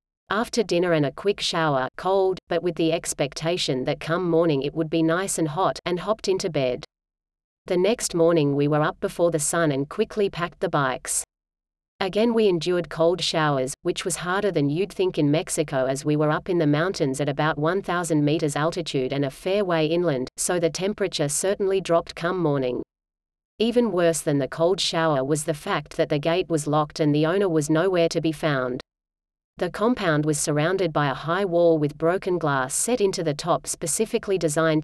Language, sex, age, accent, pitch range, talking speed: English, female, 30-49, Australian, 150-180 Hz, 195 wpm